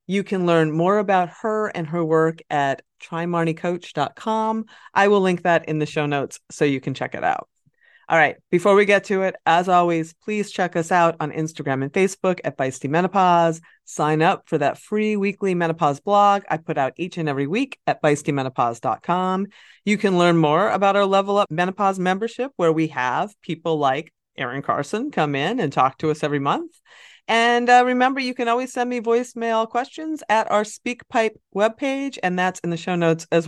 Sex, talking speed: female, 195 wpm